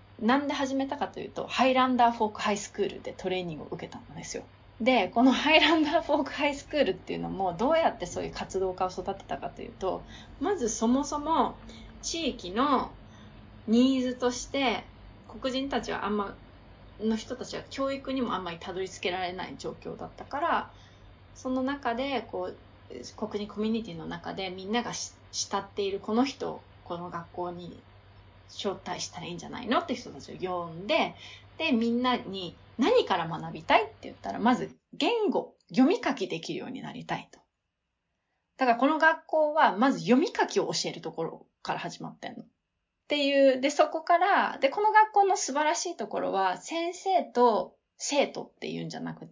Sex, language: female, Japanese